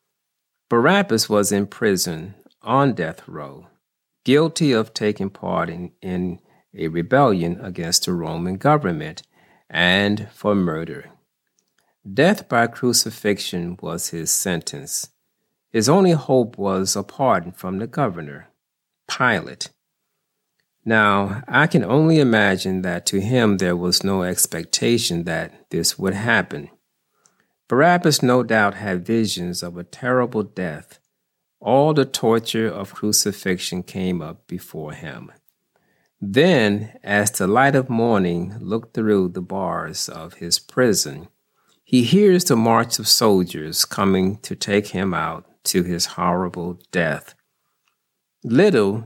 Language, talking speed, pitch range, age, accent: English, 125 wpm, 90-120 Hz, 40-59, American